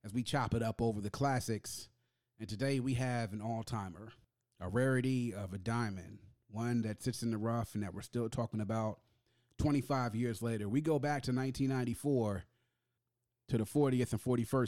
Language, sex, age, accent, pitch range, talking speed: English, male, 30-49, American, 110-130 Hz, 160 wpm